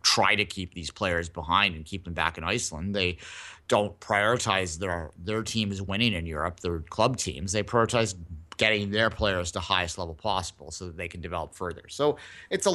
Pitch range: 95-120 Hz